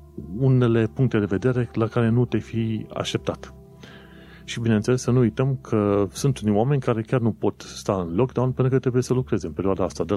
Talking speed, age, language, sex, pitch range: 205 wpm, 30-49, Romanian, male, 85-120 Hz